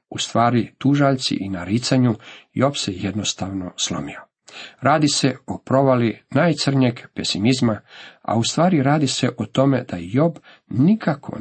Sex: male